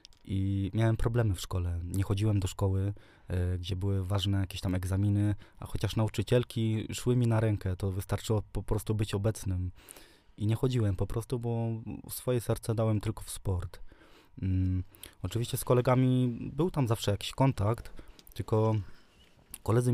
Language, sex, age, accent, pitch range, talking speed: Polish, male, 20-39, native, 95-120 Hz, 150 wpm